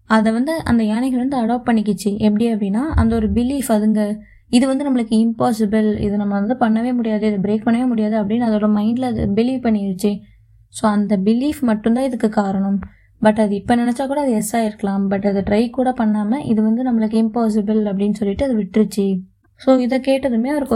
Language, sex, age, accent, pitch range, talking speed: Tamil, female, 20-39, native, 210-250 Hz, 180 wpm